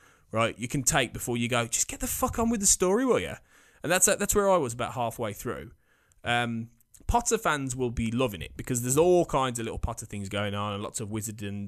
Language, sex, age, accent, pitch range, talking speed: English, male, 20-39, British, 105-135 Hz, 240 wpm